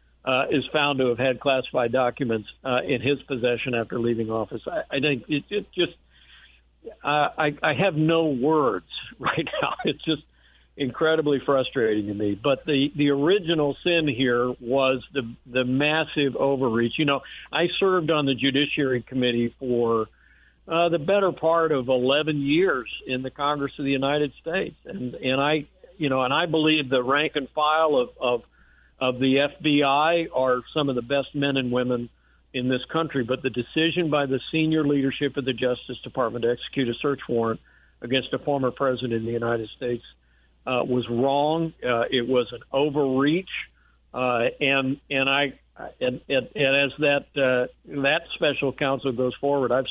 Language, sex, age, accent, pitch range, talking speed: English, male, 60-79, American, 125-150 Hz, 170 wpm